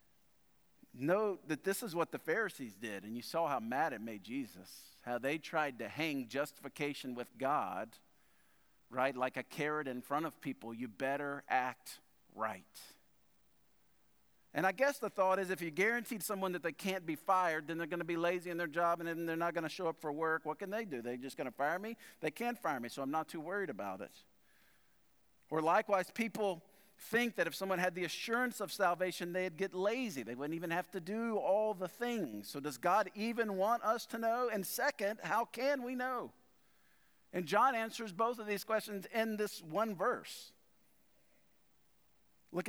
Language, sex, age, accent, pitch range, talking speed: English, male, 50-69, American, 155-210 Hz, 200 wpm